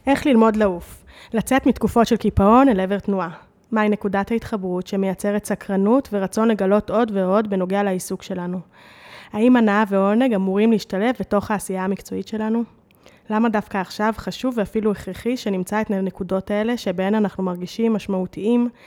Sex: female